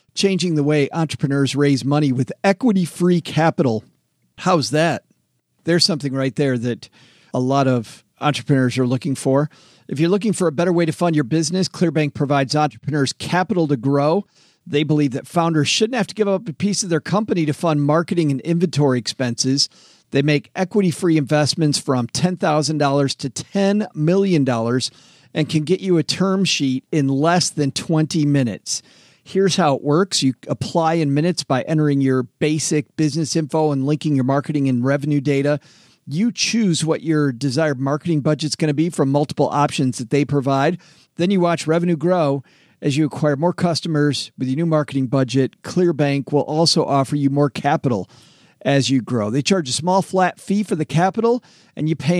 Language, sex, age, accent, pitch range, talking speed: English, male, 50-69, American, 140-175 Hz, 180 wpm